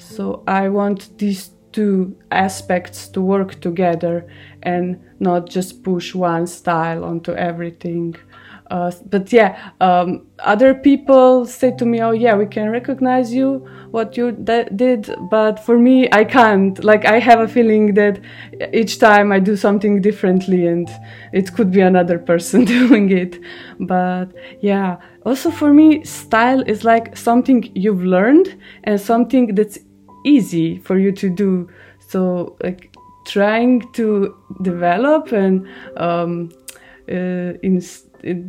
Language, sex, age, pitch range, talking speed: Hungarian, female, 20-39, 180-225 Hz, 140 wpm